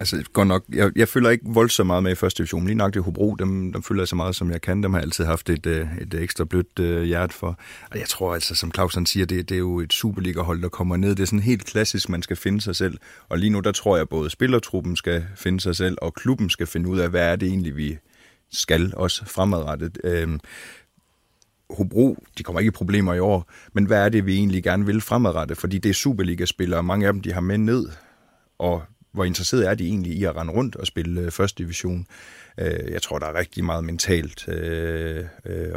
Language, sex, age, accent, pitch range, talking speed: Danish, male, 30-49, native, 85-100 Hz, 245 wpm